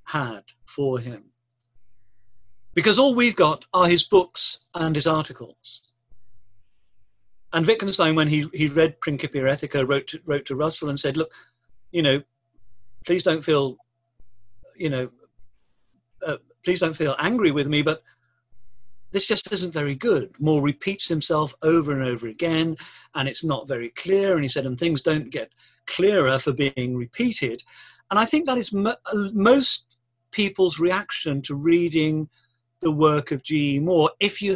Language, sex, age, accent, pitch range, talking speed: English, male, 50-69, British, 125-170 Hz, 160 wpm